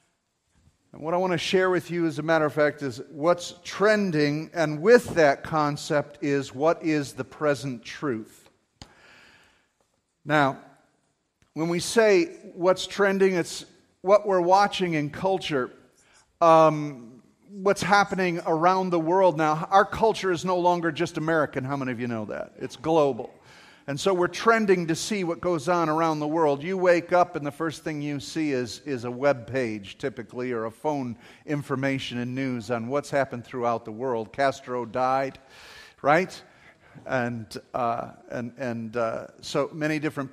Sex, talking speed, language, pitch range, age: male, 160 wpm, English, 135-175 Hz, 50-69